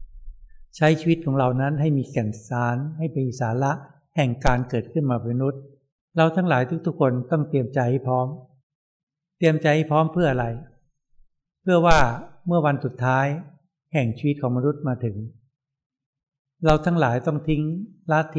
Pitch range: 125-155 Hz